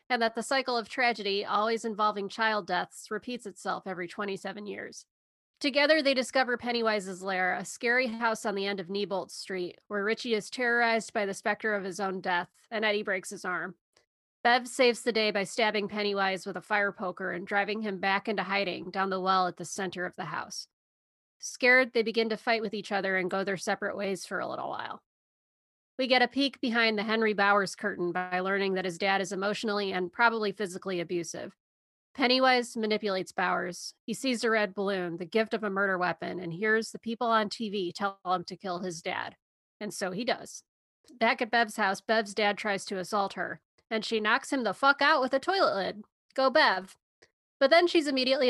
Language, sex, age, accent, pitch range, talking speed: English, female, 30-49, American, 190-230 Hz, 205 wpm